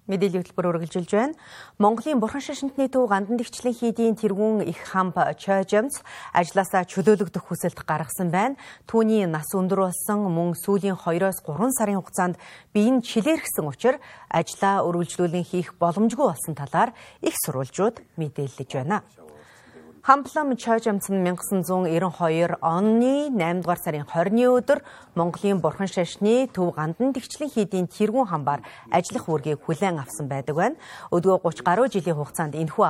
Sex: female